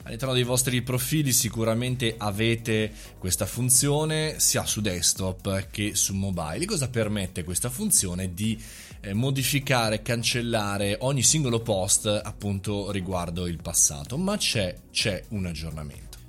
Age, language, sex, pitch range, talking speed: 20-39, Italian, male, 100-135 Hz, 120 wpm